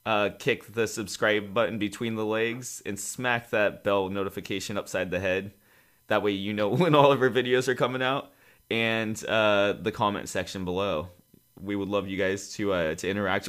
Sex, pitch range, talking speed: male, 95-120 Hz, 190 wpm